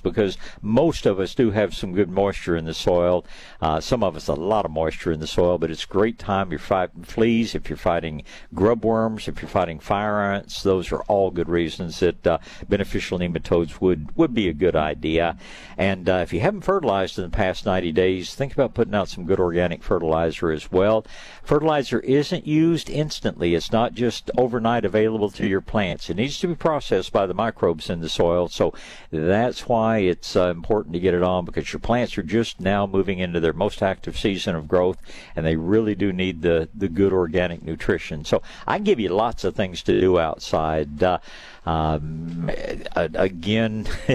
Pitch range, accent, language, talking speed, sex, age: 85-115 Hz, American, English, 205 wpm, male, 60-79